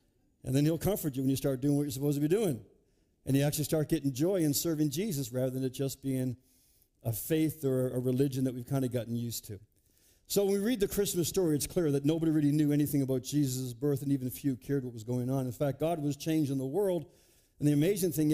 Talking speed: 255 wpm